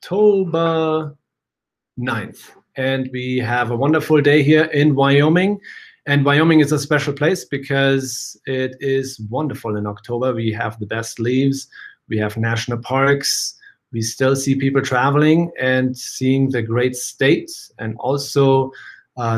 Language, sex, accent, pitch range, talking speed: English, male, German, 120-145 Hz, 140 wpm